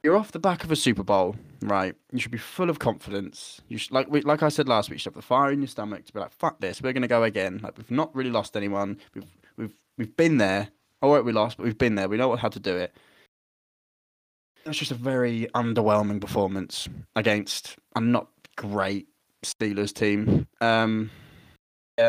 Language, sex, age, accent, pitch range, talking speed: English, male, 20-39, British, 105-125 Hz, 225 wpm